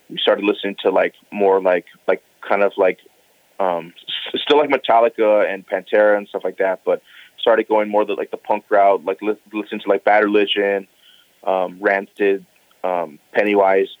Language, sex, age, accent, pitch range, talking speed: English, male, 30-49, American, 95-110 Hz, 175 wpm